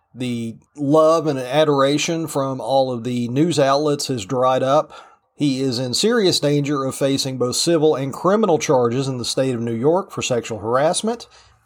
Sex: male